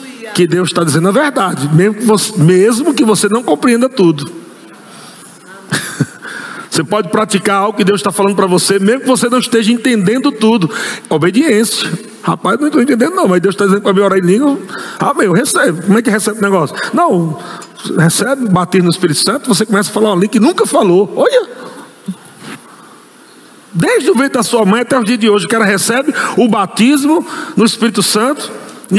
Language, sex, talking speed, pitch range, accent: Portuguese, male, 190 wpm, 195-270 Hz, Brazilian